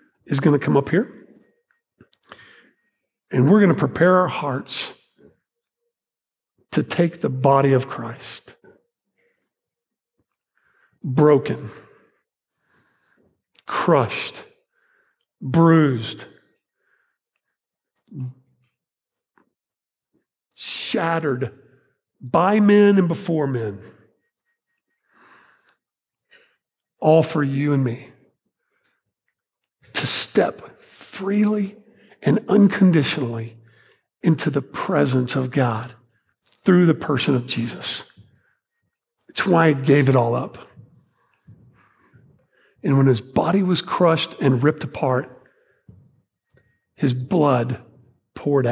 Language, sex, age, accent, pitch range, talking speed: English, male, 50-69, American, 130-195 Hz, 85 wpm